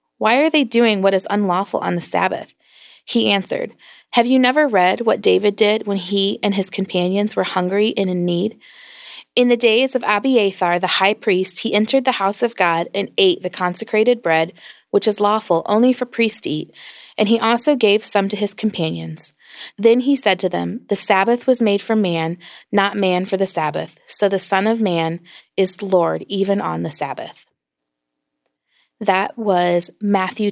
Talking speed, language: 185 wpm, English